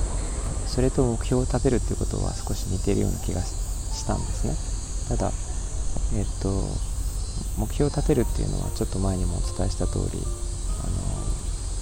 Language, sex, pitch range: Japanese, male, 90-100 Hz